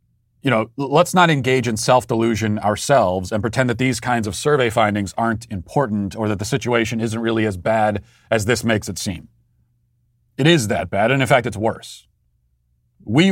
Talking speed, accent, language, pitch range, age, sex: 185 wpm, American, English, 110-140 Hz, 40-59, male